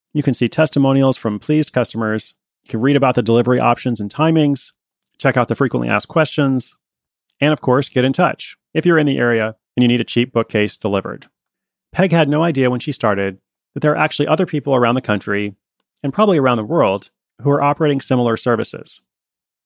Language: English